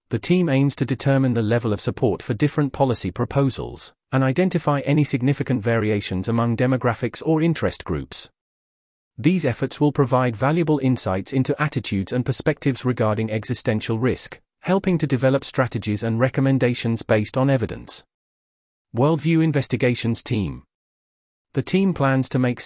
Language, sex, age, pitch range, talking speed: English, male, 40-59, 110-145 Hz, 140 wpm